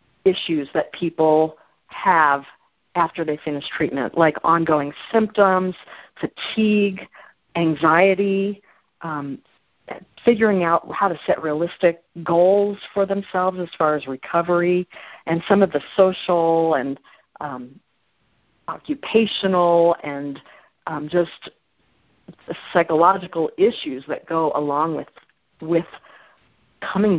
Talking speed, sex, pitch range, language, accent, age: 100 wpm, female, 155-190 Hz, English, American, 50-69